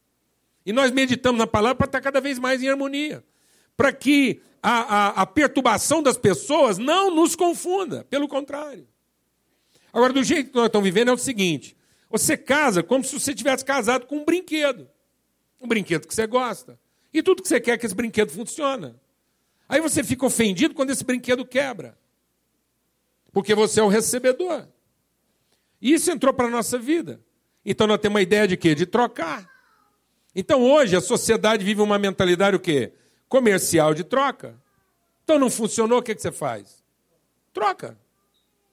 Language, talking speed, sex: Portuguese, 170 wpm, male